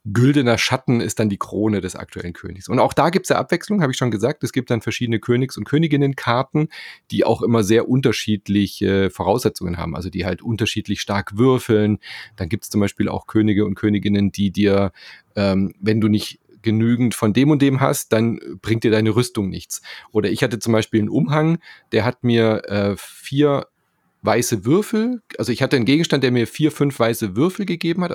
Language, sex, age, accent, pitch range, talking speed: German, male, 30-49, German, 110-140 Hz, 200 wpm